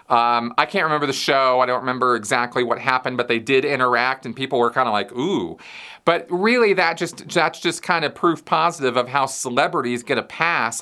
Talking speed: 205 wpm